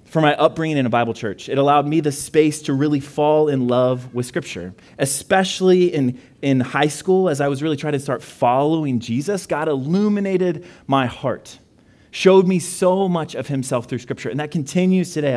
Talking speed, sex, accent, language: 190 wpm, male, American, English